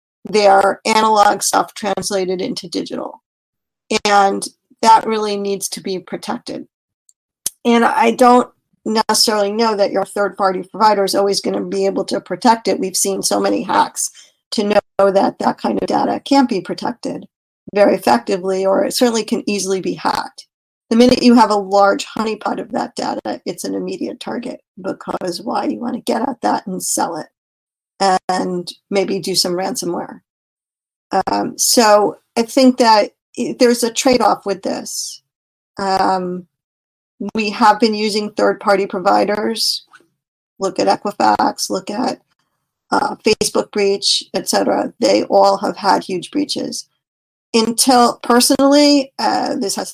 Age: 40-59